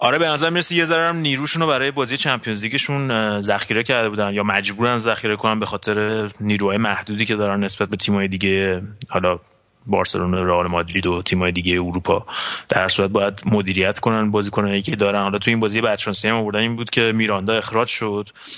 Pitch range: 100-115 Hz